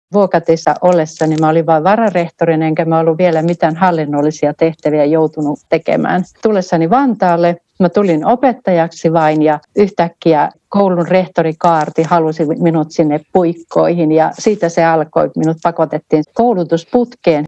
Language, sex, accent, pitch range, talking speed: Finnish, female, native, 160-195 Hz, 125 wpm